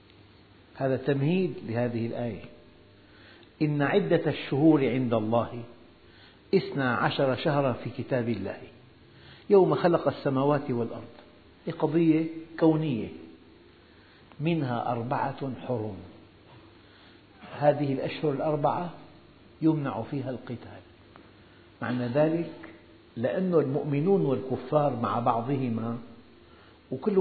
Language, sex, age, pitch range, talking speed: Arabic, male, 60-79, 105-145 Hz, 85 wpm